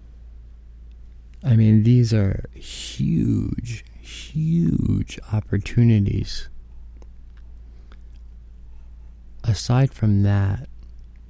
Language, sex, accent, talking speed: English, male, American, 55 wpm